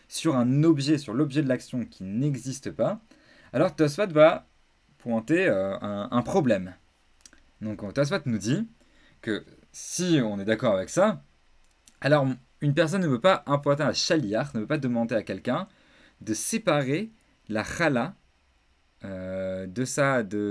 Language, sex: French, male